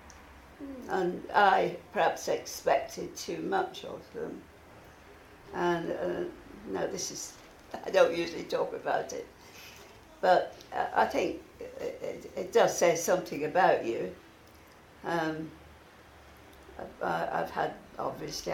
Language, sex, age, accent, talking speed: English, female, 60-79, British, 115 wpm